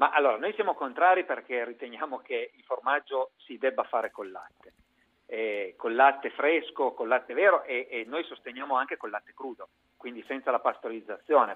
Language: Italian